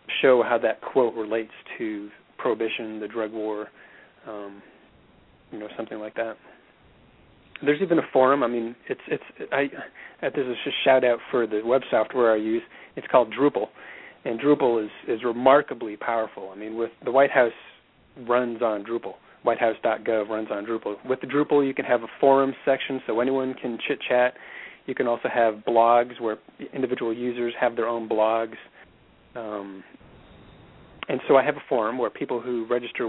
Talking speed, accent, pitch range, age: 175 wpm, American, 110-125 Hz, 30-49